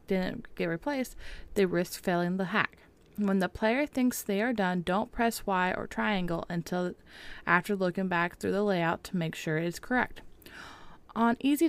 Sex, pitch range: female, 180-220 Hz